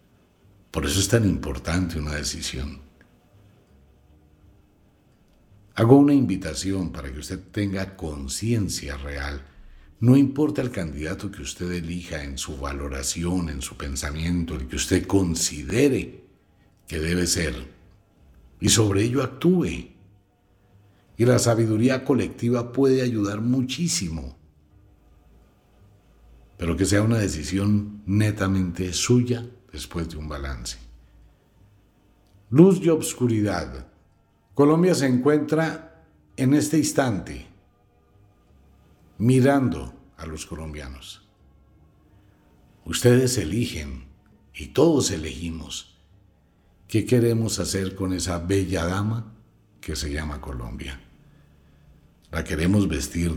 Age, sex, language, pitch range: 60-79, male, Spanish, 75-105 Hz